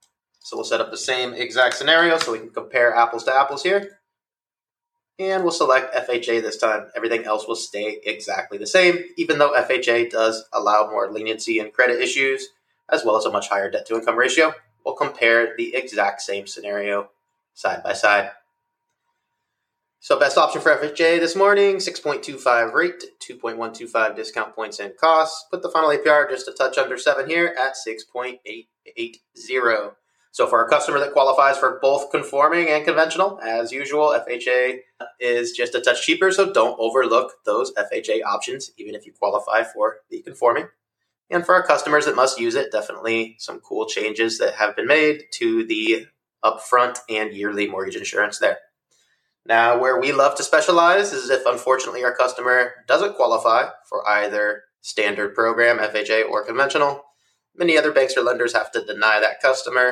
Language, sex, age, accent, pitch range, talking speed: English, male, 20-39, American, 115-180 Hz, 165 wpm